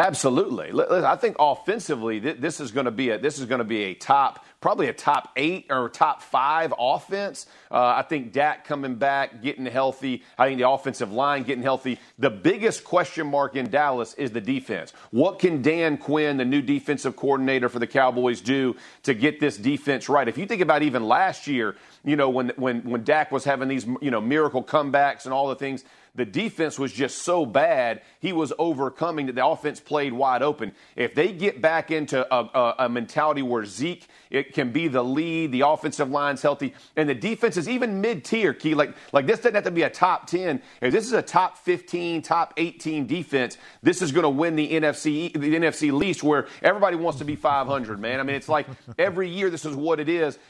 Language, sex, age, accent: English, male, 40-59, American